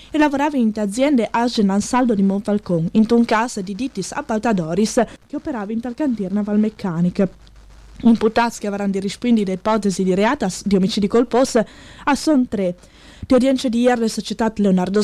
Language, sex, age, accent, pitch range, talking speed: Italian, female, 20-39, native, 195-245 Hz, 175 wpm